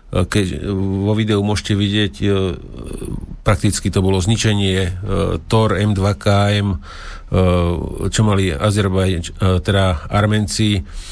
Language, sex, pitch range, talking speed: Slovak, male, 90-105 Hz, 85 wpm